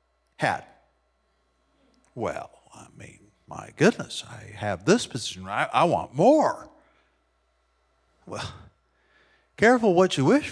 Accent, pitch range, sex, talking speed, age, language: American, 160-245 Hz, male, 110 wpm, 50-69, English